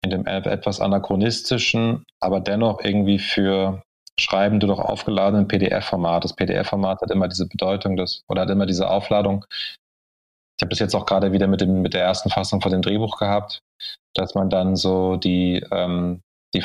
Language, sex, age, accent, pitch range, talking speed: German, male, 20-39, German, 95-105 Hz, 175 wpm